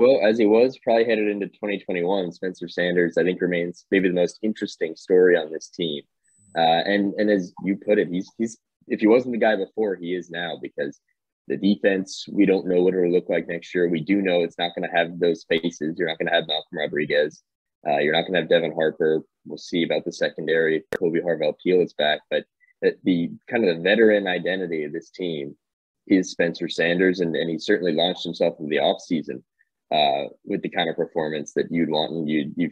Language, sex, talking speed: English, male, 220 wpm